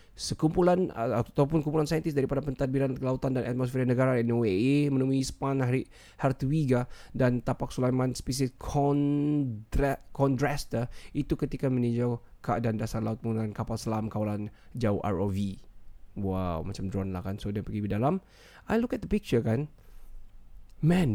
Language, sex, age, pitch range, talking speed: Malay, male, 20-39, 105-155 Hz, 140 wpm